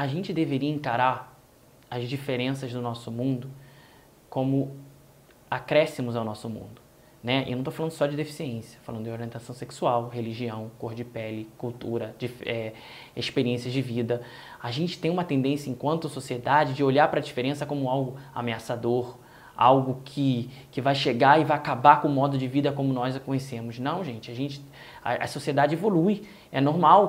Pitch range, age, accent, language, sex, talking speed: 130-170 Hz, 20-39, Brazilian, Portuguese, male, 175 wpm